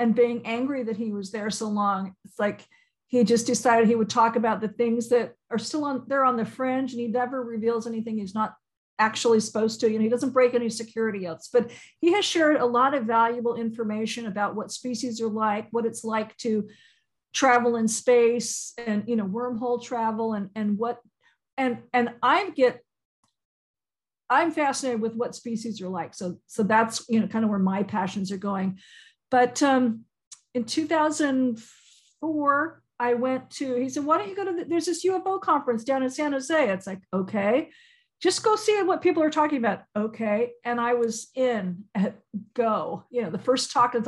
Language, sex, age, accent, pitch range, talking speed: English, female, 50-69, American, 220-260 Hz, 195 wpm